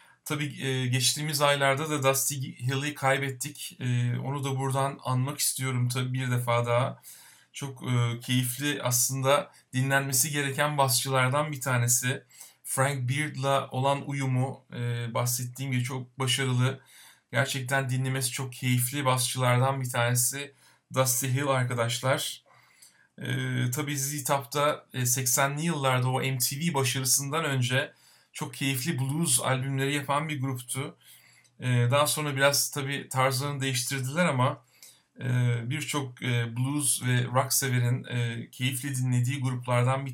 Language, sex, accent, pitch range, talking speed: Turkish, male, native, 130-145 Hz, 110 wpm